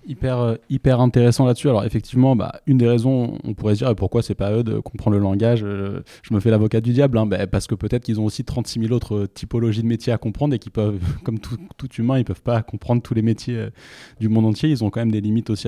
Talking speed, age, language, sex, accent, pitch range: 260 wpm, 20-39, French, male, French, 100-120 Hz